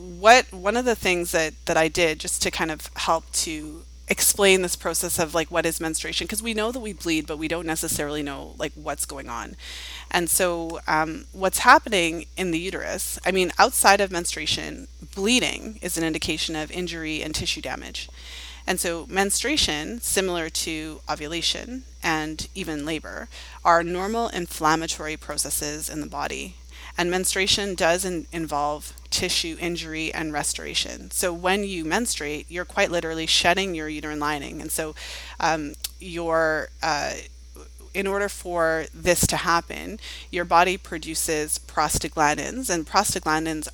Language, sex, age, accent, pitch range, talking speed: English, female, 30-49, American, 155-185 Hz, 155 wpm